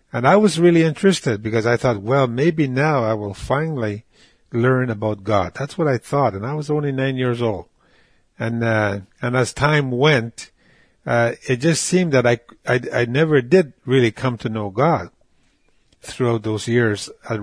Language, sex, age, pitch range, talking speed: English, male, 50-69, 115-140 Hz, 185 wpm